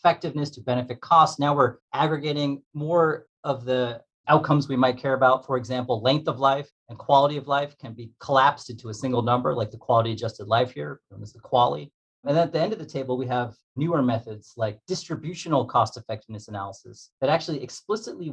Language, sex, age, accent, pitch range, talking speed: English, male, 30-49, American, 120-150 Hz, 200 wpm